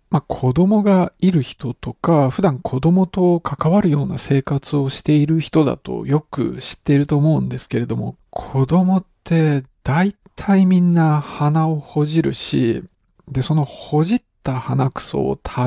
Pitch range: 130-170 Hz